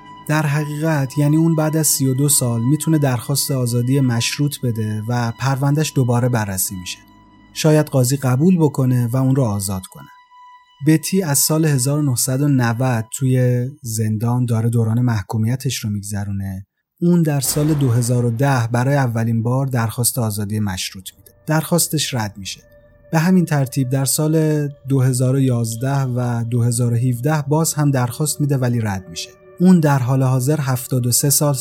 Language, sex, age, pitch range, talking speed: Persian, male, 30-49, 115-150 Hz, 140 wpm